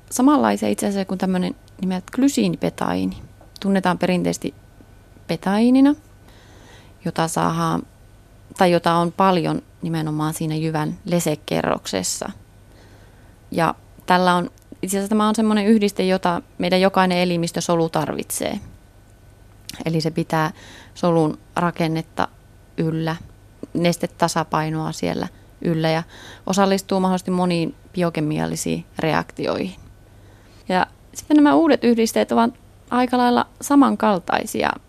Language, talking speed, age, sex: Finnish, 100 wpm, 30-49, female